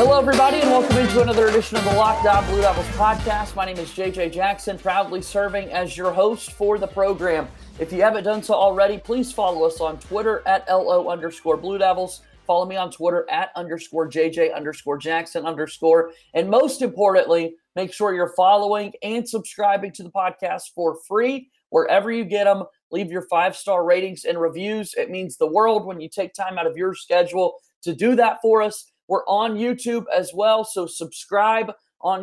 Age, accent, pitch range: 30-49, American, 175-220 Hz